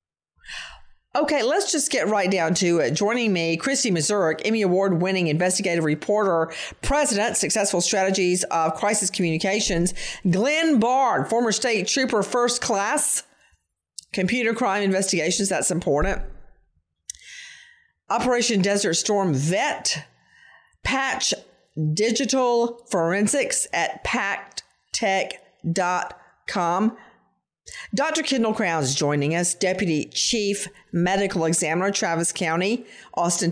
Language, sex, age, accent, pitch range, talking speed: English, female, 40-59, American, 175-235 Hz, 100 wpm